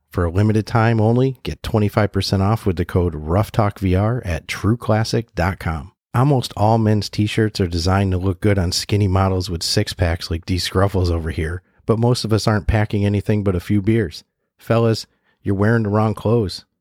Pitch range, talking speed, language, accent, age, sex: 90-110 Hz, 180 wpm, English, American, 30-49, male